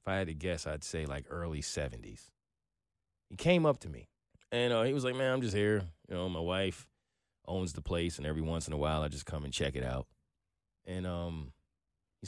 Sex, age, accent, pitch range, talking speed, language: male, 20-39, American, 90-145 Hz, 230 wpm, English